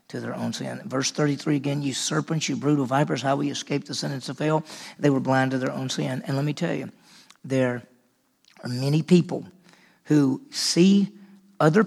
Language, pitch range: English, 130-170 Hz